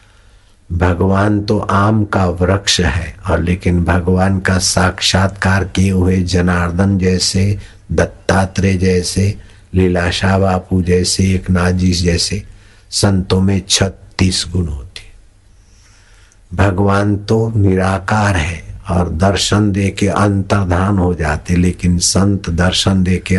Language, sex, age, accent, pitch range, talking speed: Hindi, male, 60-79, native, 90-100 Hz, 110 wpm